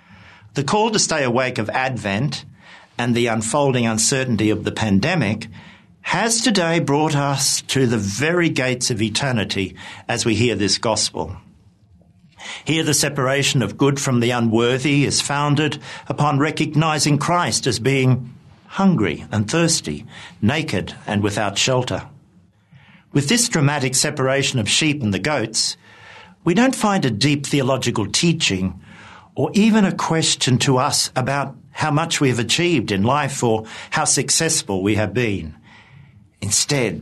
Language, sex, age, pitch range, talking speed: English, male, 50-69, 110-150 Hz, 145 wpm